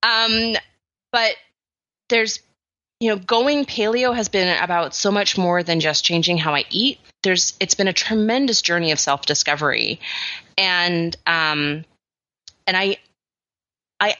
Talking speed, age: 140 wpm, 30-49